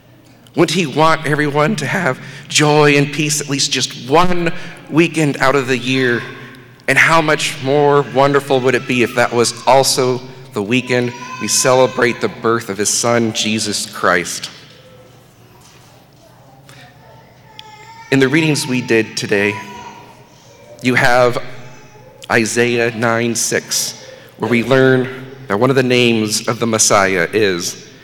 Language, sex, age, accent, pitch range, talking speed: English, male, 40-59, American, 115-140 Hz, 135 wpm